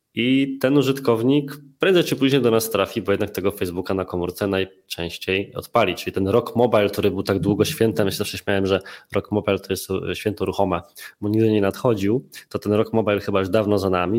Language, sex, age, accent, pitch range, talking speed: Polish, male, 20-39, native, 95-115 Hz, 210 wpm